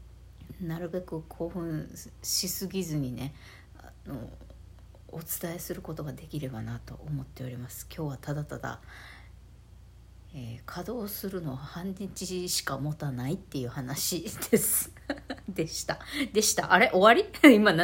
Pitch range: 135-190 Hz